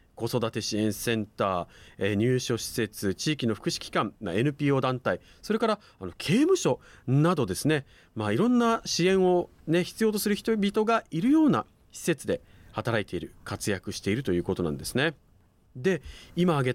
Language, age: Japanese, 40-59